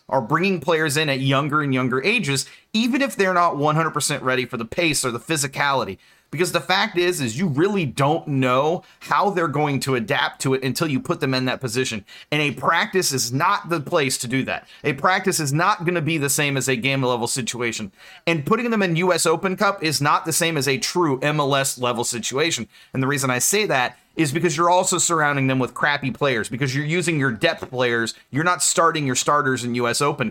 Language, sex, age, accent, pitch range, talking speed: English, male, 30-49, American, 135-175 Hz, 225 wpm